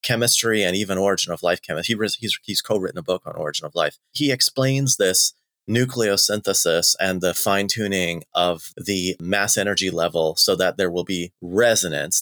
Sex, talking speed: male, 165 wpm